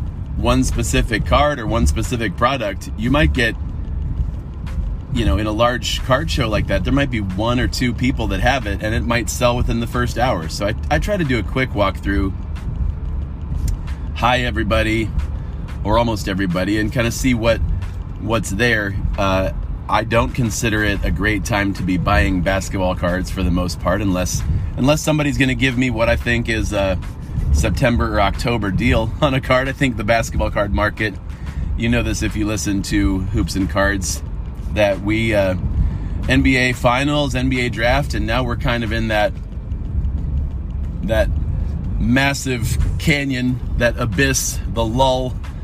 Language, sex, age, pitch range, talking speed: English, male, 30-49, 85-120 Hz, 175 wpm